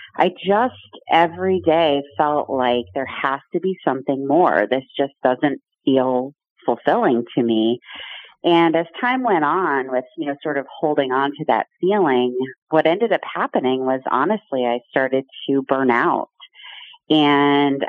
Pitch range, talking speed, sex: 130-150 Hz, 155 wpm, female